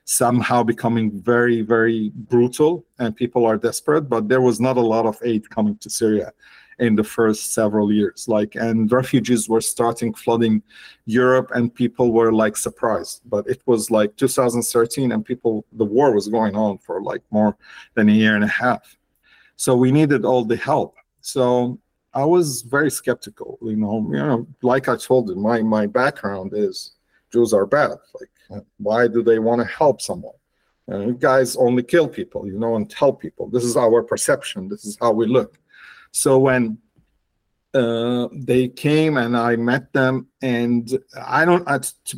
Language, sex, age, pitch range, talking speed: English, male, 50-69, 110-125 Hz, 175 wpm